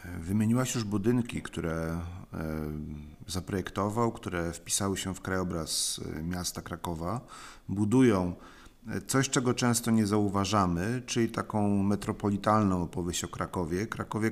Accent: native